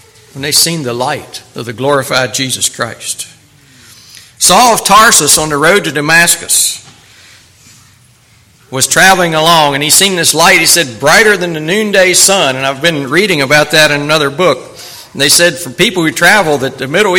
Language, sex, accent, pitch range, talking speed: English, male, American, 125-170 Hz, 180 wpm